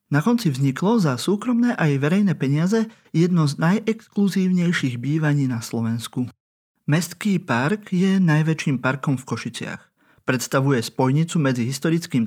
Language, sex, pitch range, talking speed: Slovak, male, 135-185 Hz, 120 wpm